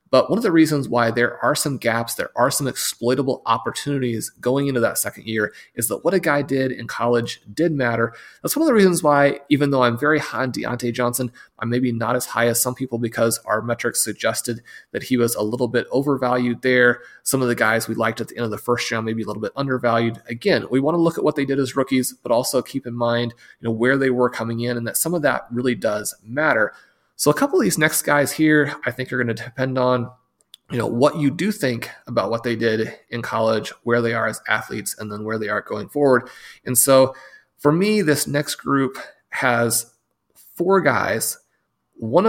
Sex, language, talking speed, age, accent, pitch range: male, English, 235 wpm, 30-49, American, 120-140 Hz